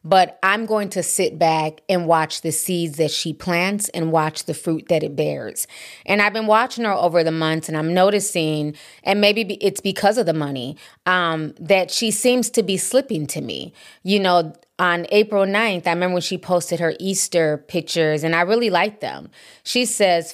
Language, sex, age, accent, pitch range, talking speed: English, female, 30-49, American, 155-185 Hz, 200 wpm